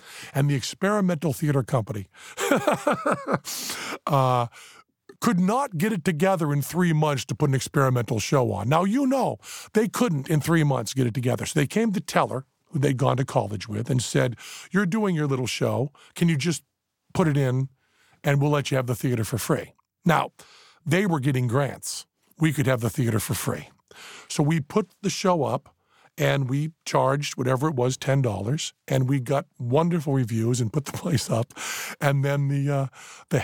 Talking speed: 185 wpm